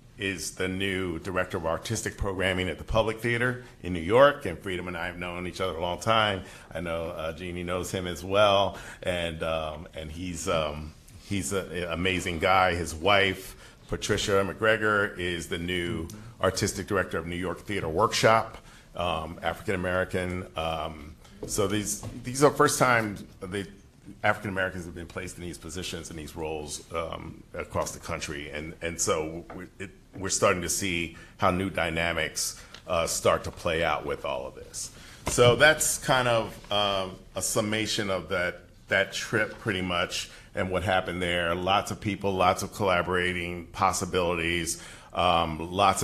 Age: 40-59